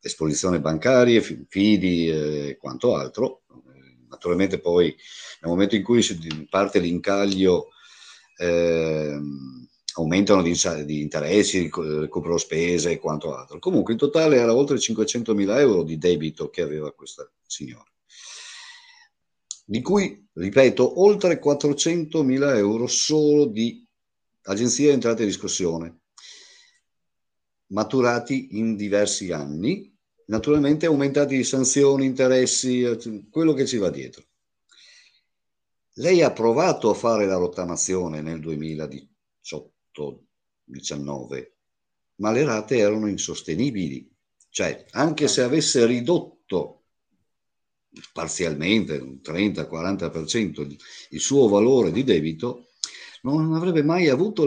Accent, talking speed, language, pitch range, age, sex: native, 105 wpm, Italian, 85-130 Hz, 50-69, male